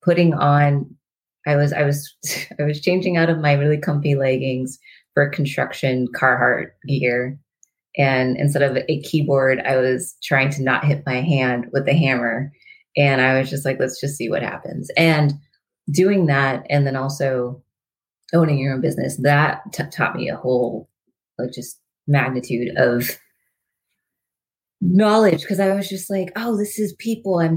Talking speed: 165 wpm